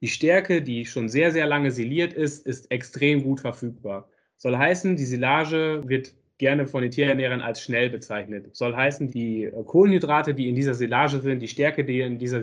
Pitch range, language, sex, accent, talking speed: 120-145 Hz, German, male, German, 190 wpm